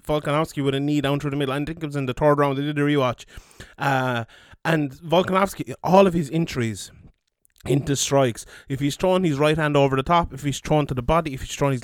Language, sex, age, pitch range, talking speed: English, male, 20-39, 130-155 Hz, 240 wpm